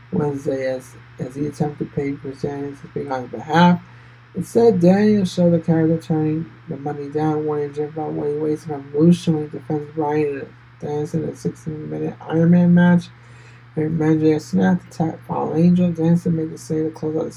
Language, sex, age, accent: English, male, 20-39, American